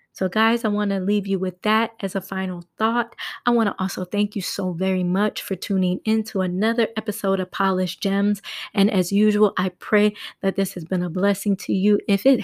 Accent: American